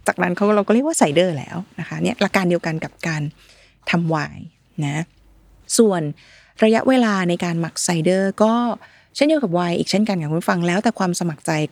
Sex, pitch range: female, 165-210 Hz